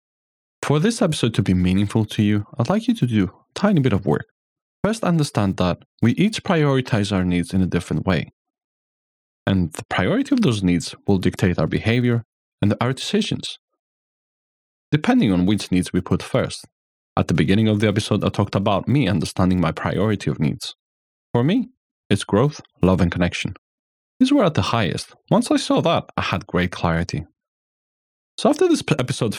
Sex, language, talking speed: male, English, 180 wpm